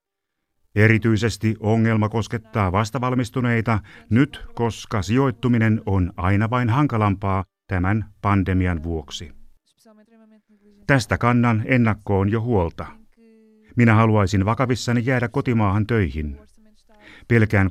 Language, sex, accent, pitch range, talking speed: Finnish, male, native, 100-125 Hz, 90 wpm